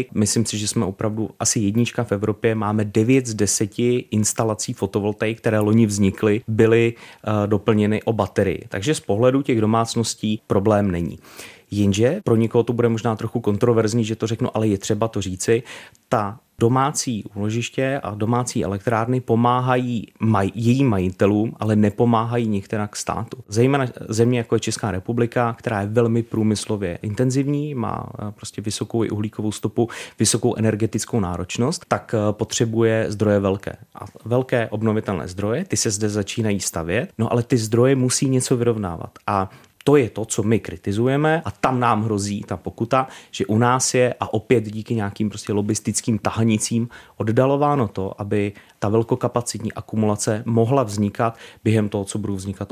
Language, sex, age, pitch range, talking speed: Czech, male, 30-49, 105-120 Hz, 155 wpm